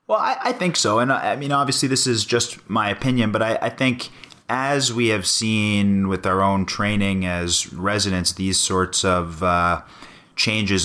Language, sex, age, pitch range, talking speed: English, male, 30-49, 85-100 Hz, 190 wpm